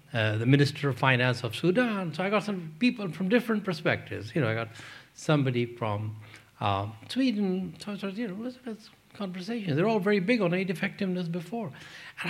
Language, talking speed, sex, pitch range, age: English, 200 wpm, male, 140-195 Hz, 60-79